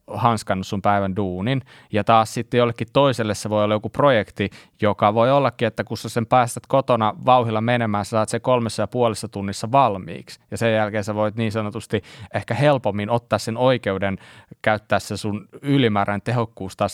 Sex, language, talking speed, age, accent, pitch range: male, Finnish, 180 wpm, 20-39, native, 105-125 Hz